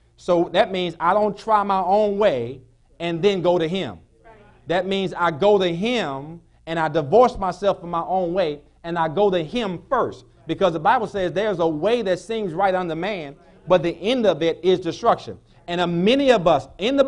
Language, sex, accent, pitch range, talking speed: English, male, American, 180-240 Hz, 210 wpm